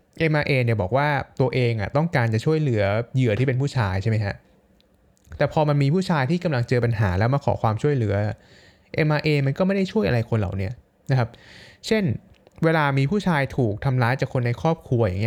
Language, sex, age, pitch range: Thai, male, 20-39, 110-150 Hz